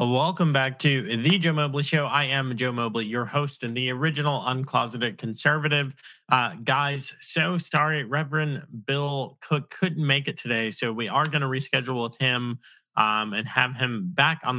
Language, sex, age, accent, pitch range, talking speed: English, male, 30-49, American, 115-145 Hz, 175 wpm